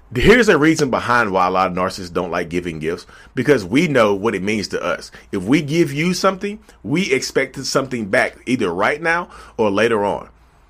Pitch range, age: 95-145 Hz, 30-49